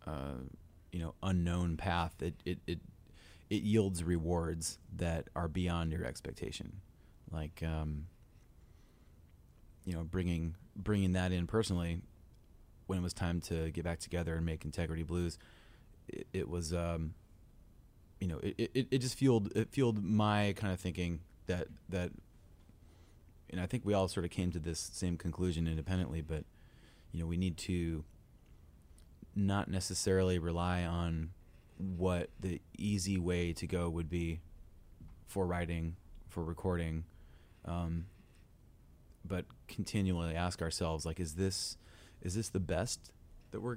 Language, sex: English, male